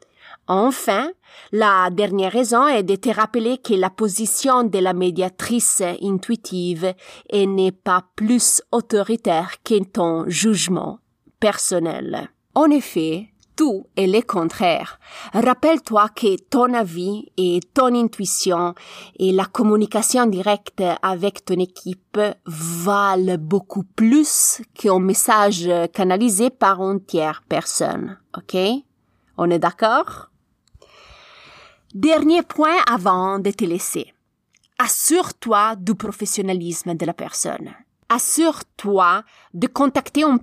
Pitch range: 185-235 Hz